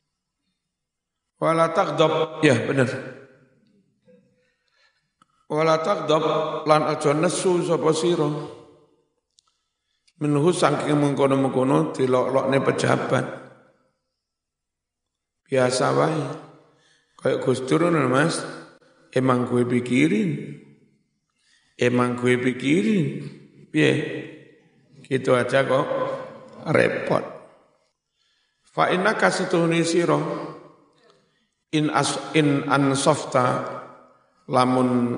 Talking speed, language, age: 80 wpm, Indonesian, 60-79